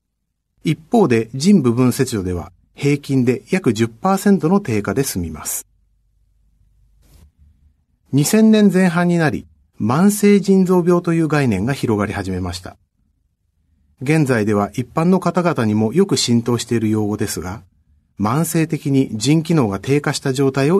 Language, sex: Japanese, male